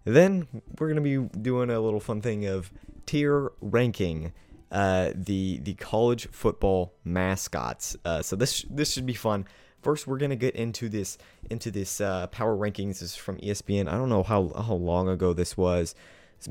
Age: 20-39